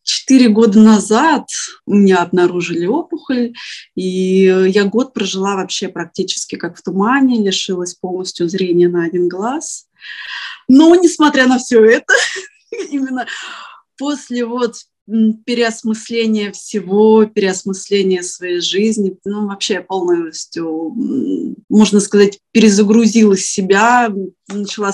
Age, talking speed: 20-39, 110 wpm